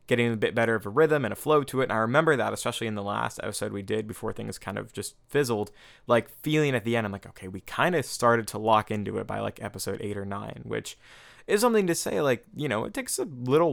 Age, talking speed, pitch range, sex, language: 20-39, 275 wpm, 100-125 Hz, male, English